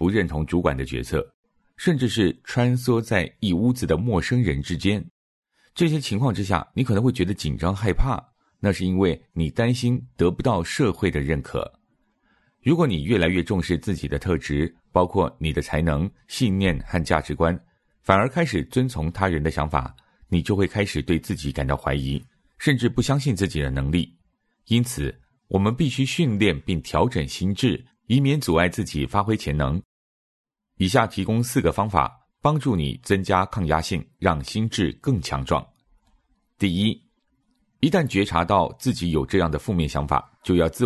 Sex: male